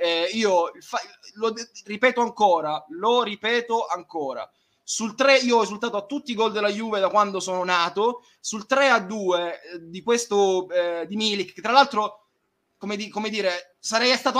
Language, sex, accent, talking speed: Italian, male, native, 175 wpm